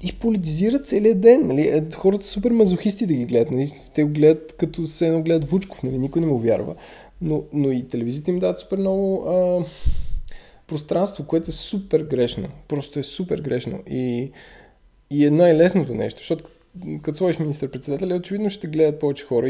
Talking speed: 180 wpm